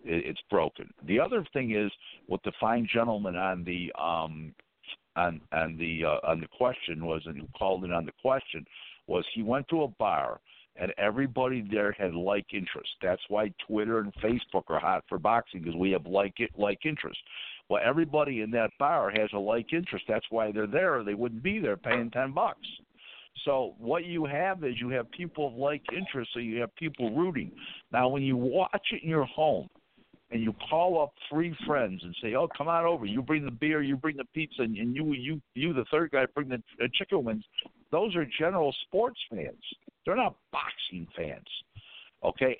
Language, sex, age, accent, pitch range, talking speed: English, male, 60-79, American, 105-145 Hz, 205 wpm